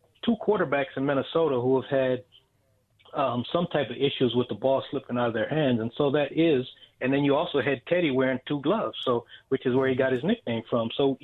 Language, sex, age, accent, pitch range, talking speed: English, male, 30-49, American, 125-135 Hz, 230 wpm